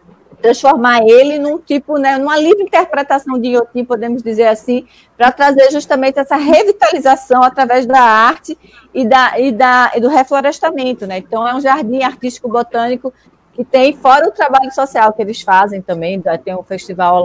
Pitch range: 200-265 Hz